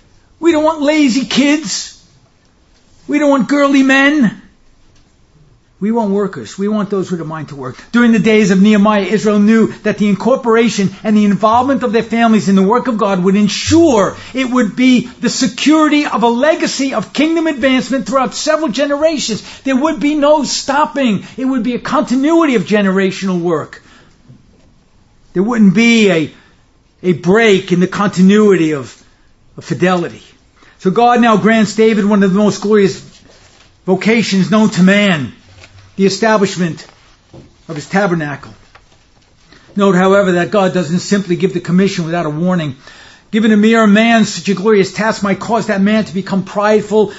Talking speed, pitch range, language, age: 165 wpm, 185-240 Hz, English, 50-69